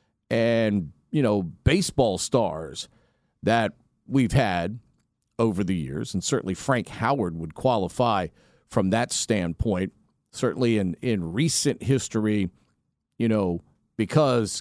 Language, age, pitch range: English, 40-59, 105-140 Hz